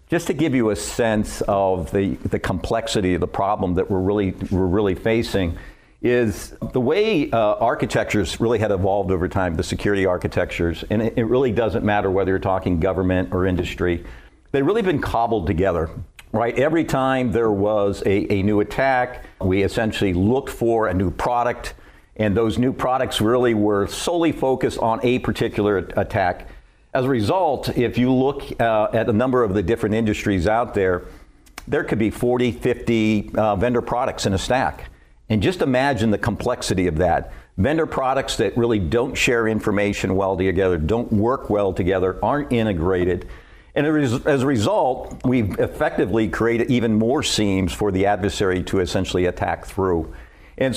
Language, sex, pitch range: English, male, 95-115 Hz